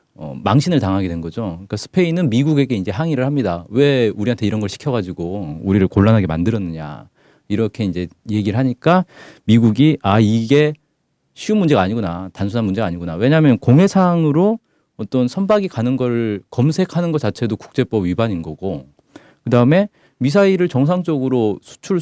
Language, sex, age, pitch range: Korean, male, 40-59, 105-155 Hz